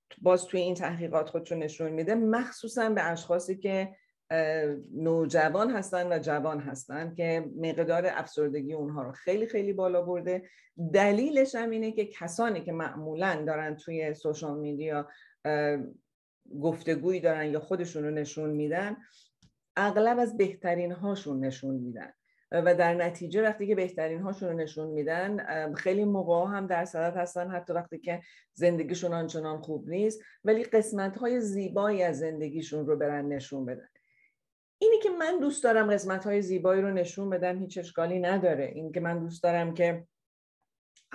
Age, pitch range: 40-59, 160-190 Hz